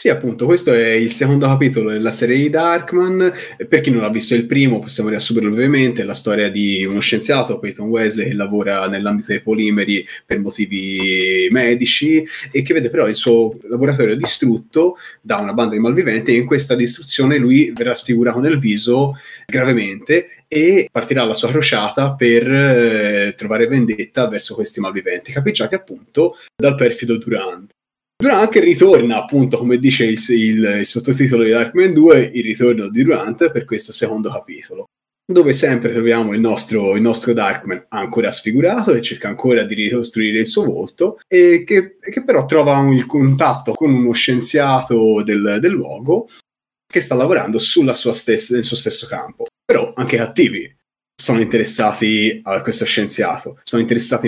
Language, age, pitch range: Italian, 20-39, 110-140 Hz